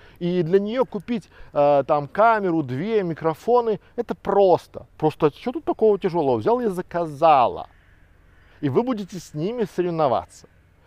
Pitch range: 125-200 Hz